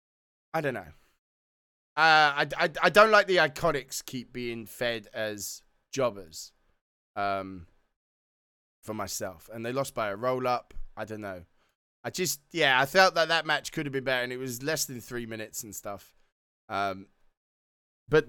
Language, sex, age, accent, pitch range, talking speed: English, male, 20-39, British, 105-140 Hz, 170 wpm